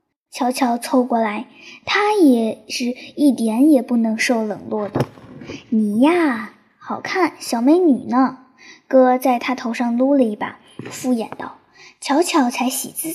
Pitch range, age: 245-325 Hz, 10-29